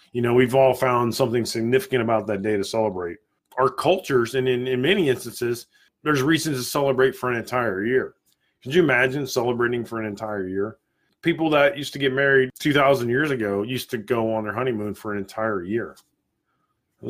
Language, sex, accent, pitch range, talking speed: English, male, American, 115-150 Hz, 195 wpm